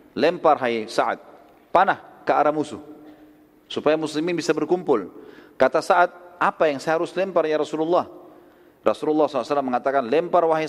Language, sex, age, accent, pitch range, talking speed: Indonesian, male, 40-59, native, 155-215 Hz, 140 wpm